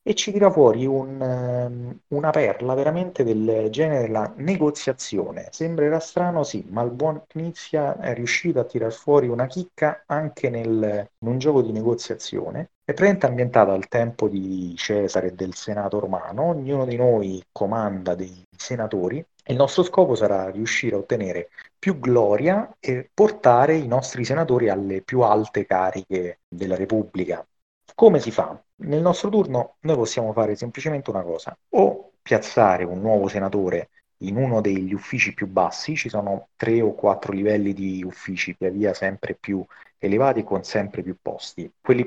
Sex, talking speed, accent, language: male, 160 wpm, native, Italian